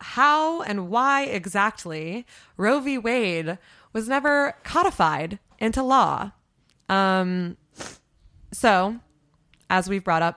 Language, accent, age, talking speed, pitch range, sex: English, American, 20-39, 105 wpm, 170-225 Hz, female